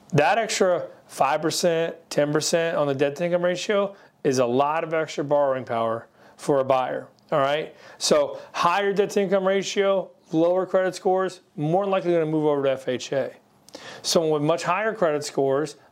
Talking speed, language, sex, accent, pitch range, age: 165 wpm, English, male, American, 135-180 Hz, 40-59